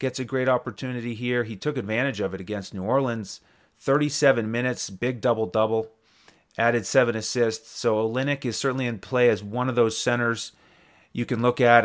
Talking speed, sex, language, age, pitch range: 180 wpm, male, English, 30-49, 110-125 Hz